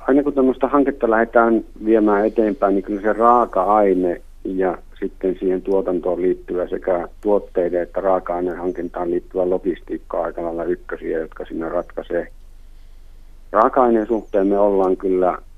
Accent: native